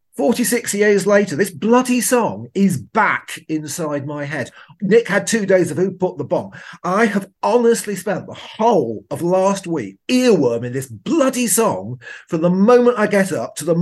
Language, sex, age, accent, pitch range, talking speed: English, male, 40-59, British, 155-205 Hz, 180 wpm